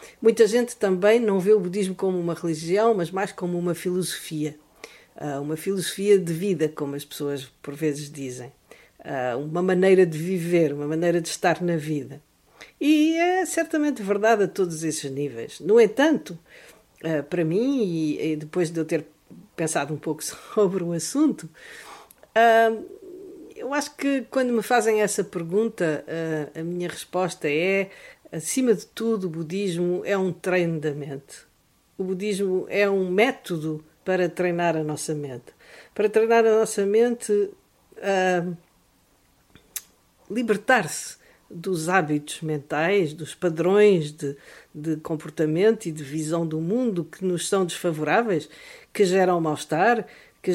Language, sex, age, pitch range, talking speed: Portuguese, female, 50-69, 160-215 Hz, 140 wpm